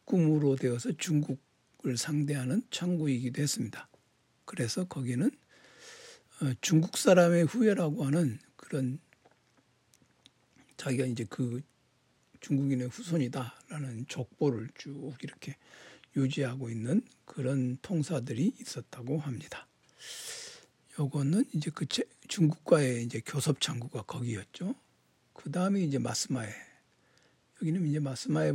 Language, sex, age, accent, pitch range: Korean, male, 60-79, native, 130-160 Hz